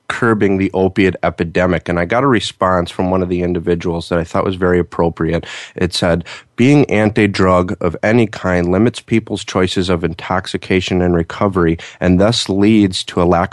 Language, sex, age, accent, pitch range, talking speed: English, male, 30-49, American, 90-100 Hz, 175 wpm